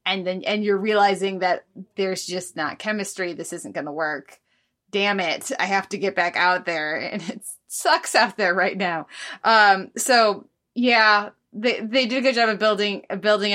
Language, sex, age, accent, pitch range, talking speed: English, female, 20-39, American, 185-225 Hz, 195 wpm